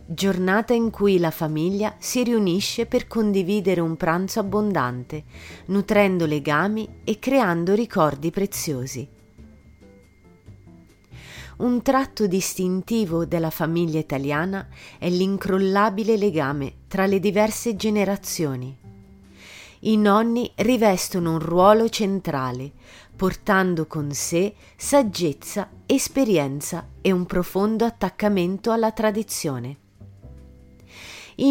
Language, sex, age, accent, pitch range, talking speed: Italian, female, 30-49, native, 140-210 Hz, 95 wpm